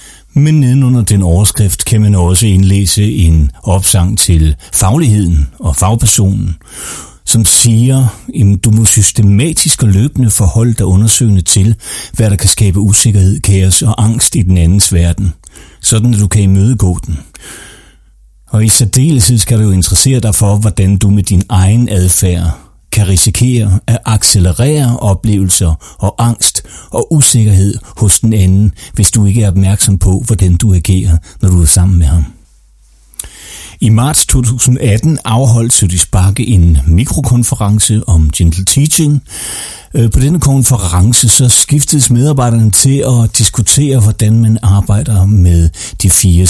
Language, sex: Danish, male